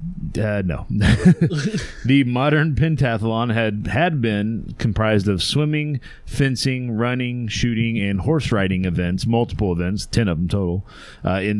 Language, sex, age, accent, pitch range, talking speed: English, male, 30-49, American, 95-120 Hz, 135 wpm